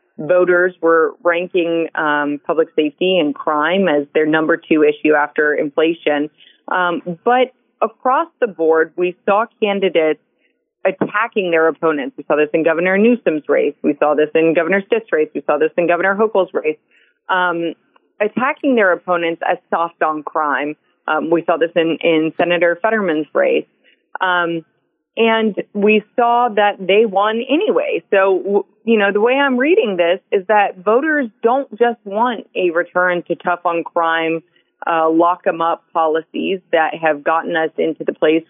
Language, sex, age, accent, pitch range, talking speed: English, female, 30-49, American, 160-215 Hz, 160 wpm